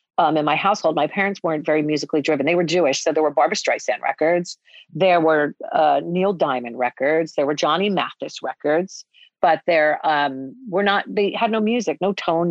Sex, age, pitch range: female, 40-59, 155-200 Hz